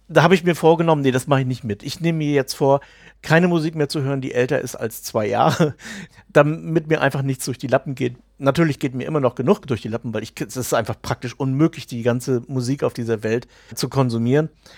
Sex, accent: male, German